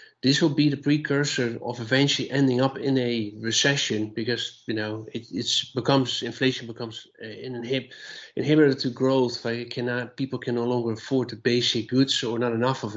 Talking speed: 180 wpm